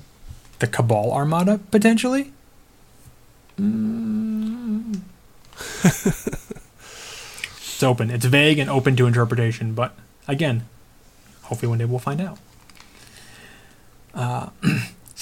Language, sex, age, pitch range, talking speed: English, male, 20-39, 120-155 Hz, 85 wpm